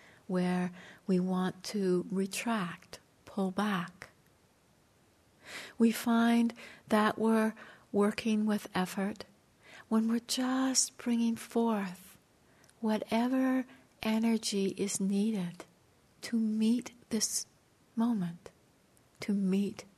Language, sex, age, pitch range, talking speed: English, female, 60-79, 185-215 Hz, 85 wpm